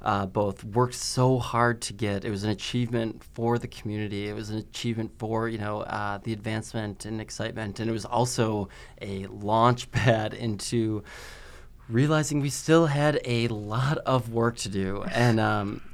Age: 20-39